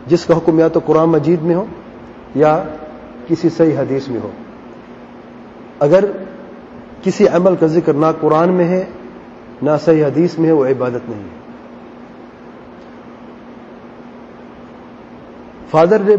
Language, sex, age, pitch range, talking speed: English, male, 40-59, 150-185 Hz, 120 wpm